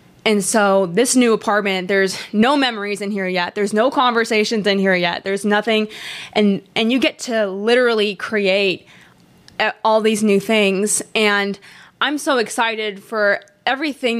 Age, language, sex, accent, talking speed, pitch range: 20-39, English, female, American, 150 wpm, 210-265 Hz